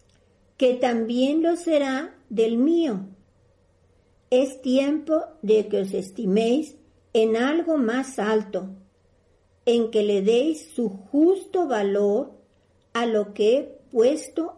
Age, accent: 50-69, American